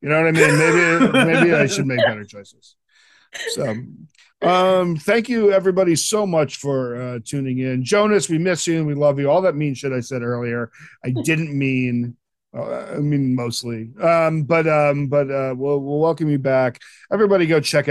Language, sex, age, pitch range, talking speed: English, male, 40-59, 120-150 Hz, 195 wpm